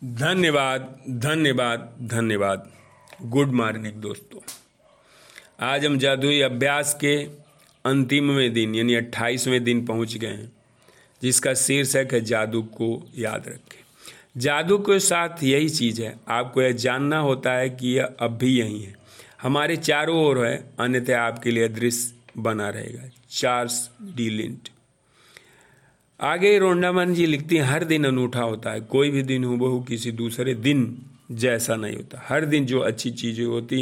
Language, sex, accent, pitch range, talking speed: Hindi, male, native, 115-140 Hz, 150 wpm